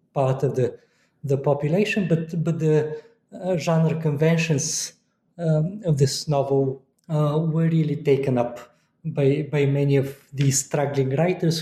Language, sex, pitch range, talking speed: English, male, 145-175 Hz, 140 wpm